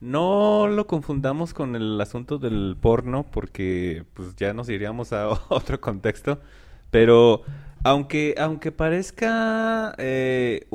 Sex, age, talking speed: male, 30-49, 115 wpm